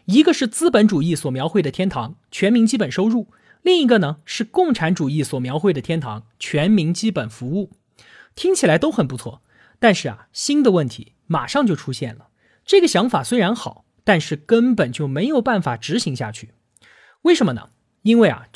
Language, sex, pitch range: Chinese, male, 155-245 Hz